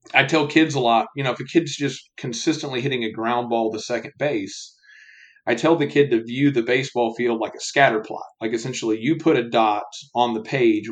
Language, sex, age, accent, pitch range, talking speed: English, male, 40-59, American, 115-145 Hz, 225 wpm